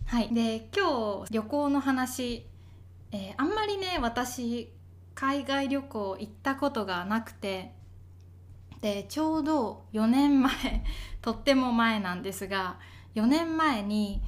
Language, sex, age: Japanese, female, 20-39